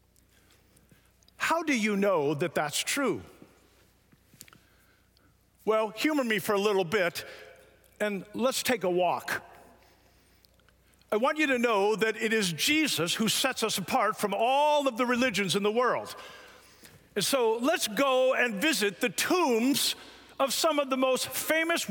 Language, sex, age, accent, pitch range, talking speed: English, male, 50-69, American, 210-275 Hz, 150 wpm